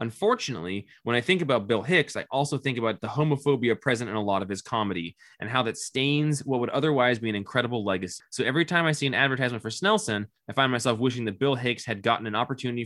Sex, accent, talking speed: male, American, 240 wpm